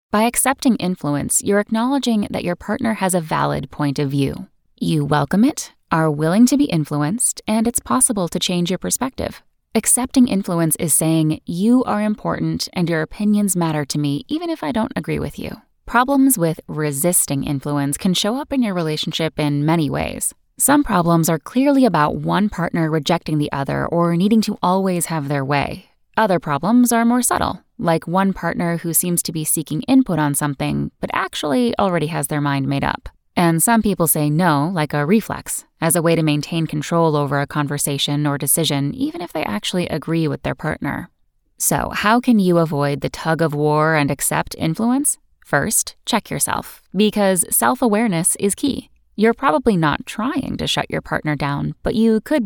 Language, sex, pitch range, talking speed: English, female, 150-225 Hz, 185 wpm